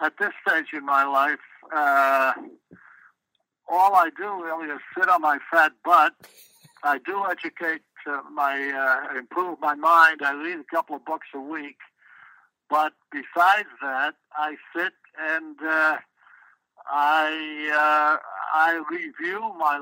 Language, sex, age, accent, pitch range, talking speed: English, male, 60-79, American, 145-175 Hz, 140 wpm